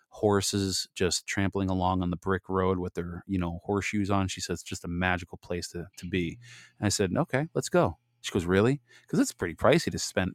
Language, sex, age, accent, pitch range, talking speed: English, male, 30-49, American, 95-130 Hz, 225 wpm